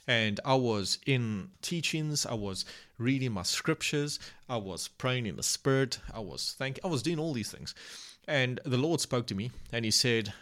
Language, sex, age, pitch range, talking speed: English, male, 30-49, 110-140 Hz, 195 wpm